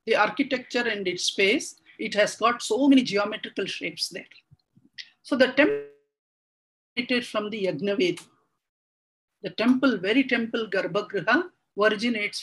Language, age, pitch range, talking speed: English, 50-69, 200-275 Hz, 125 wpm